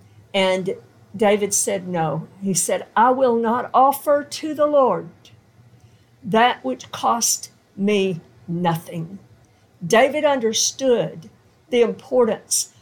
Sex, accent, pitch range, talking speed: female, American, 170-225 Hz, 105 wpm